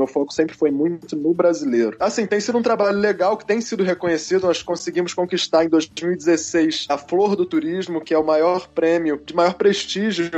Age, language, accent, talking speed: 20-39, Portuguese, Brazilian, 195 wpm